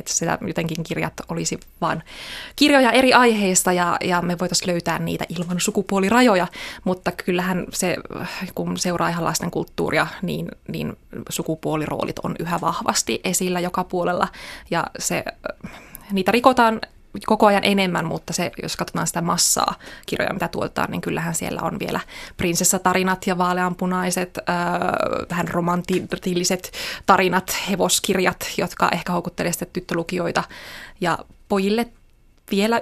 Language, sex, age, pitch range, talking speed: Finnish, female, 20-39, 175-205 Hz, 125 wpm